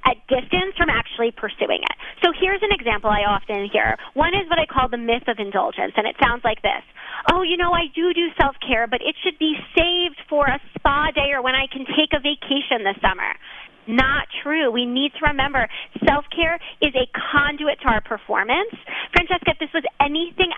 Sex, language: female, English